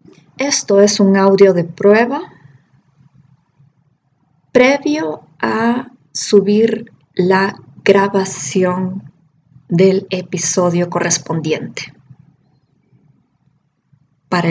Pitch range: 145-195 Hz